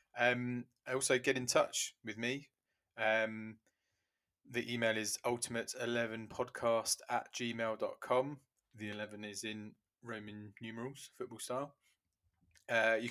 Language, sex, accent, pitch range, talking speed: English, male, British, 105-120 Hz, 130 wpm